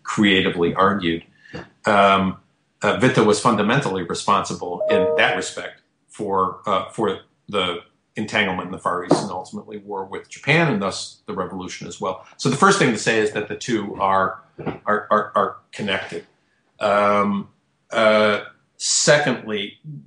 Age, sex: 50-69, male